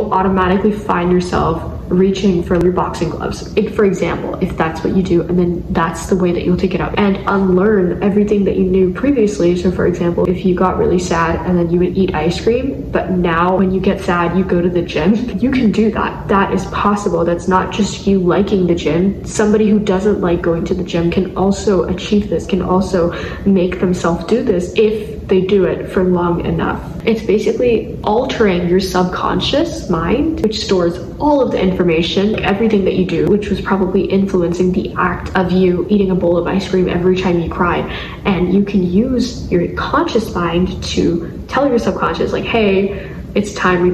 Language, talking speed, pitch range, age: English, 200 wpm, 180-205 Hz, 10-29